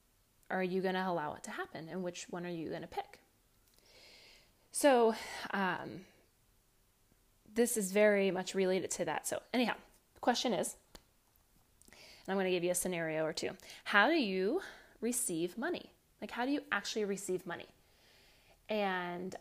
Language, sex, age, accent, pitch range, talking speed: English, female, 20-39, American, 180-215 Hz, 165 wpm